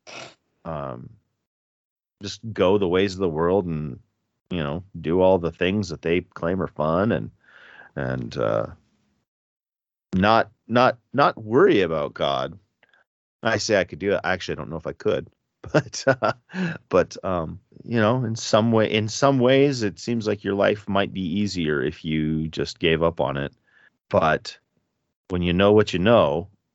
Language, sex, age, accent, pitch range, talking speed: English, male, 40-59, American, 80-105 Hz, 170 wpm